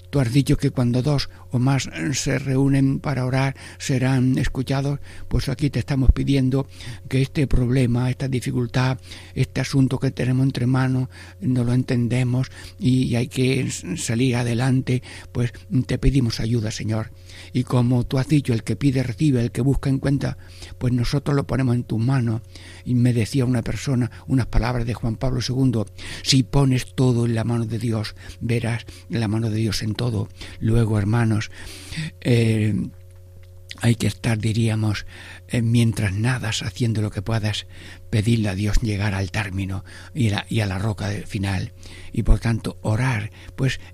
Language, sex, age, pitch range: Spanish, male, 60-79, 105-130 Hz